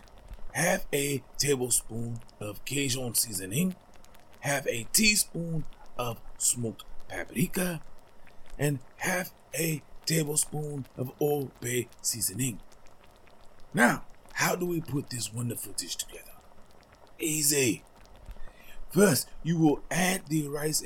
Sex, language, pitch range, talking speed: male, English, 110-155 Hz, 105 wpm